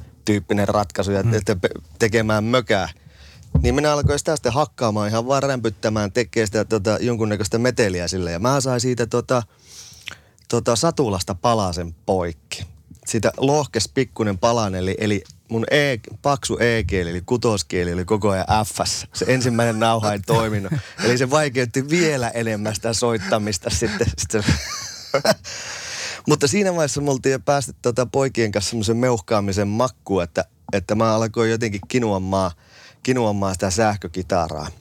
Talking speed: 130 wpm